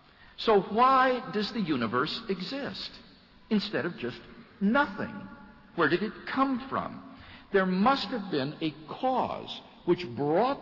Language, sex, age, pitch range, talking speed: English, male, 60-79, 175-235 Hz, 130 wpm